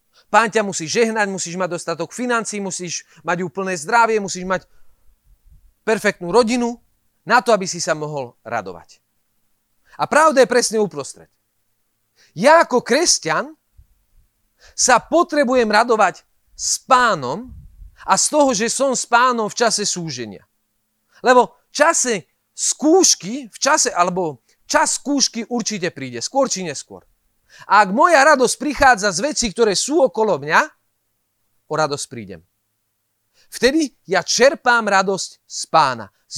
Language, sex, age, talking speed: Slovak, male, 40-59, 130 wpm